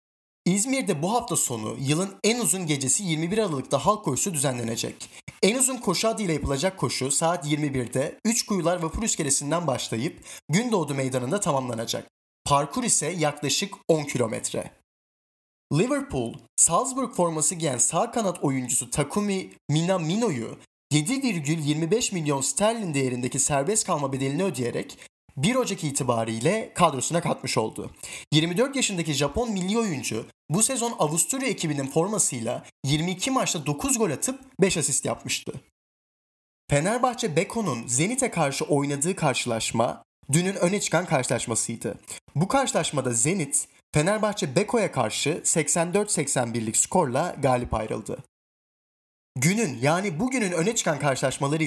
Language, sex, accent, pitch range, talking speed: Turkish, male, native, 135-190 Hz, 115 wpm